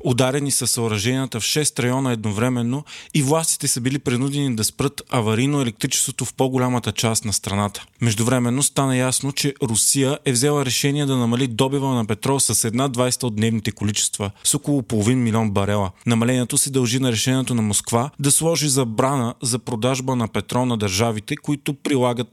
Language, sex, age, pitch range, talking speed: Bulgarian, male, 30-49, 115-135 Hz, 170 wpm